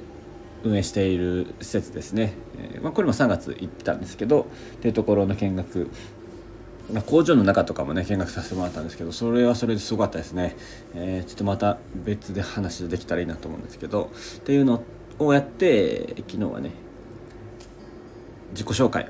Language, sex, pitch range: Japanese, male, 90-115 Hz